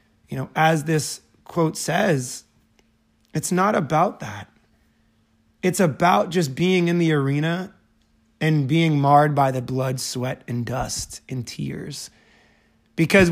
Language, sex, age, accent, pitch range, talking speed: English, male, 20-39, American, 130-170 Hz, 130 wpm